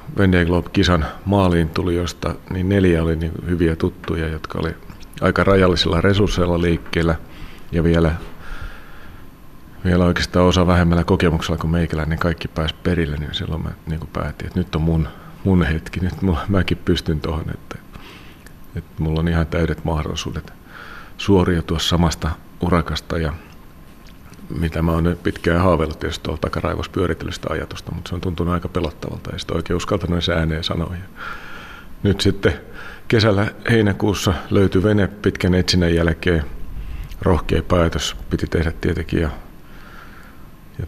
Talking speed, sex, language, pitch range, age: 140 wpm, male, Finnish, 80-90 Hz, 40-59